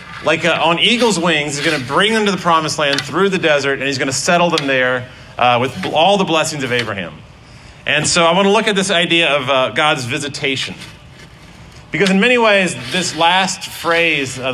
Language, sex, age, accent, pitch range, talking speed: English, male, 40-59, American, 130-175 Hz, 215 wpm